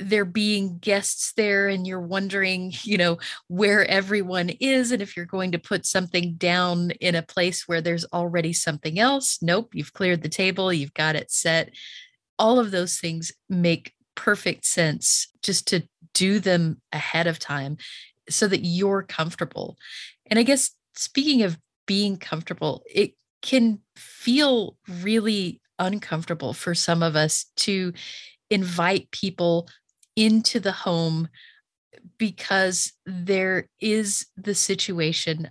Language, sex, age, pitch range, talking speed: English, female, 30-49, 170-205 Hz, 140 wpm